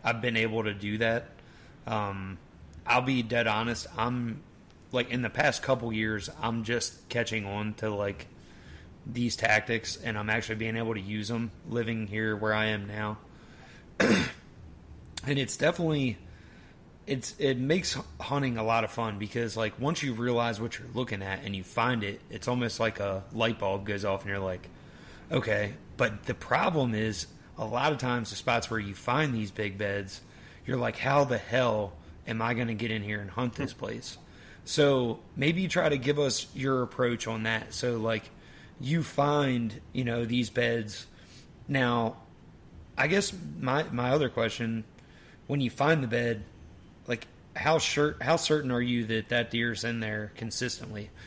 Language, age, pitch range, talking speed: English, 30-49, 105-125 Hz, 180 wpm